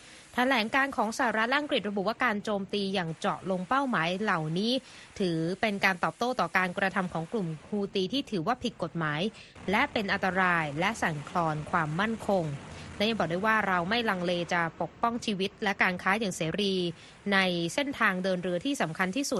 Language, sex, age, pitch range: Thai, female, 20-39, 185-235 Hz